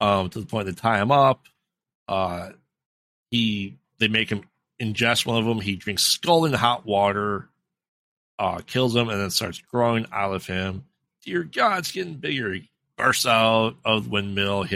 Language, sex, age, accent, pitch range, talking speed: English, male, 30-49, American, 95-120 Hz, 185 wpm